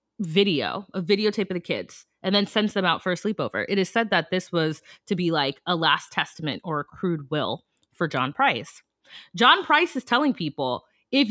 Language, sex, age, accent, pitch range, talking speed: English, female, 20-39, American, 165-235 Hz, 205 wpm